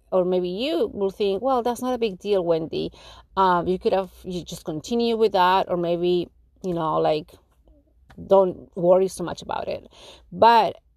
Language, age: English, 30-49